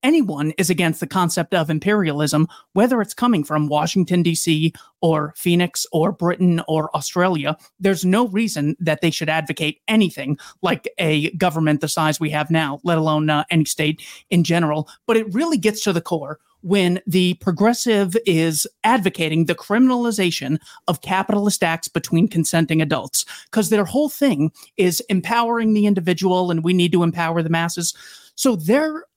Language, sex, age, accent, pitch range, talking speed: English, male, 30-49, American, 160-200 Hz, 165 wpm